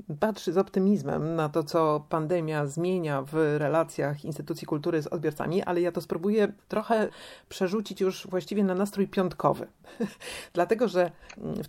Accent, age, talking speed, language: native, 40-59, 145 wpm, Polish